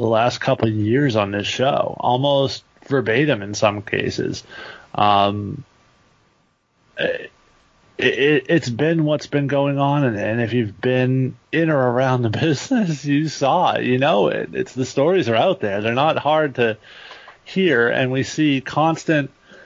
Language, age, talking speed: English, 30-49, 160 wpm